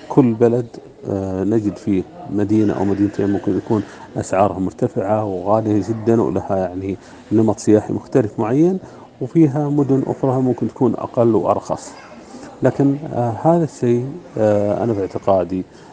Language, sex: Arabic, male